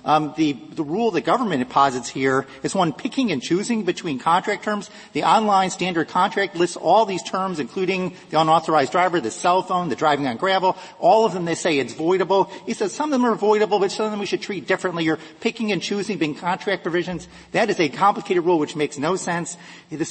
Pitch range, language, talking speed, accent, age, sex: 155-195 Hz, English, 220 wpm, American, 40-59, male